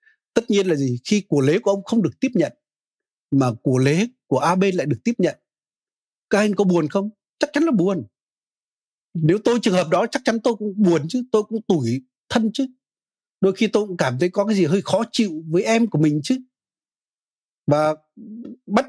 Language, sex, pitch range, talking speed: Vietnamese, male, 150-225 Hz, 210 wpm